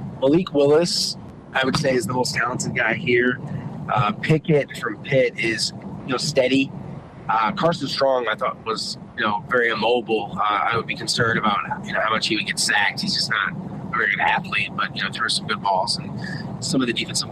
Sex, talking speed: male, 215 wpm